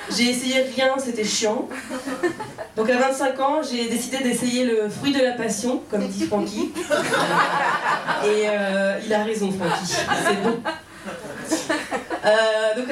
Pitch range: 210-255 Hz